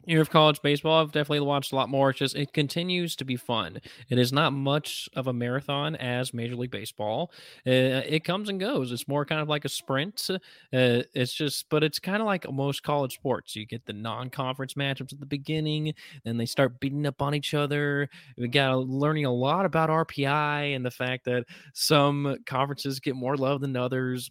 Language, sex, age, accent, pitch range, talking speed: English, male, 20-39, American, 120-150 Hz, 210 wpm